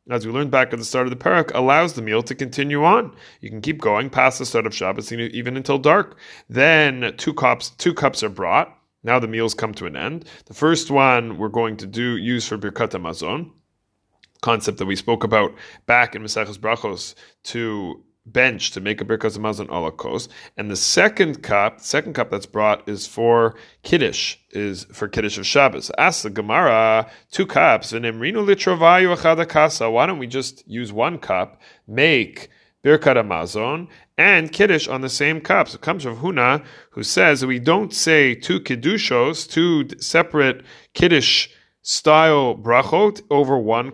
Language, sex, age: English, male, 30-49